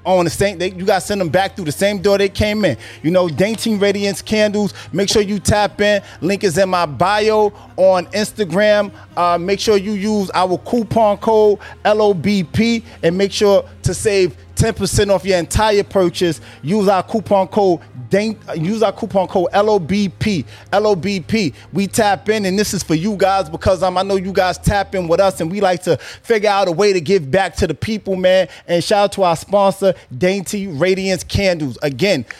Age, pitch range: 20-39, 185-215 Hz